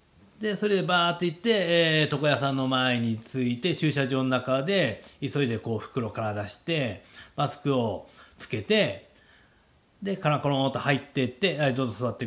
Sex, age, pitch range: male, 40-59, 120-170 Hz